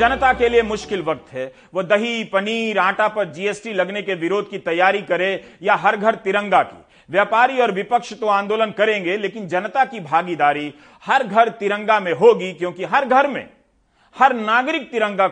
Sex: male